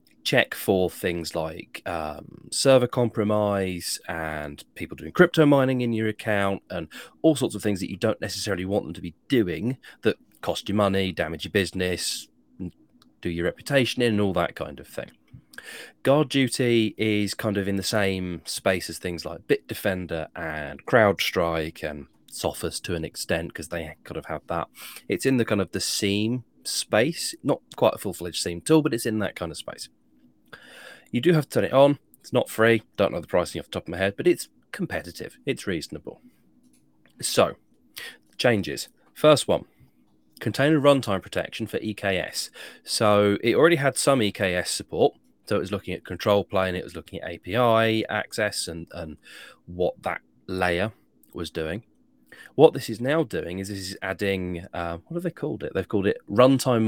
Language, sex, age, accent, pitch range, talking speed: English, male, 30-49, British, 85-120 Hz, 180 wpm